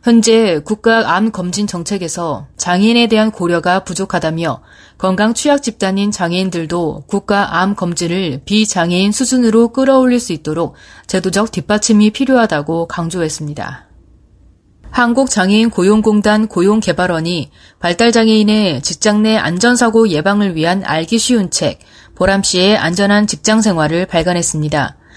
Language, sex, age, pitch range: Korean, female, 30-49, 170-225 Hz